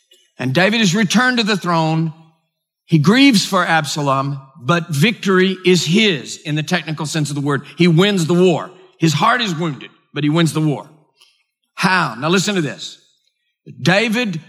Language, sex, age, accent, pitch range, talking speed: English, male, 50-69, American, 155-195 Hz, 170 wpm